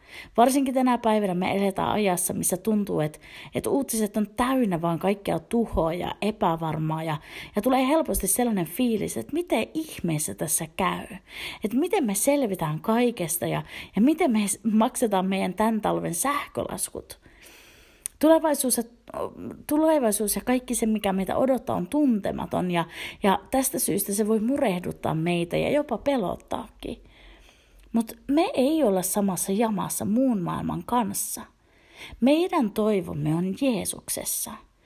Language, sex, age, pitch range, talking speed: Finnish, female, 30-49, 190-270 Hz, 135 wpm